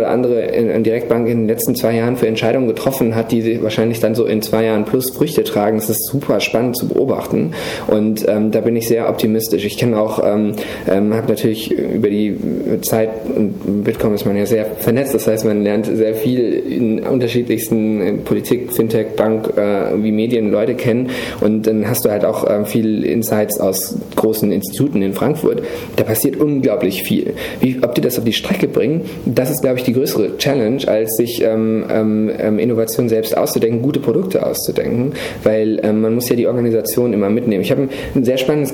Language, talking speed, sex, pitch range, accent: German, 190 wpm, male, 105-120 Hz, German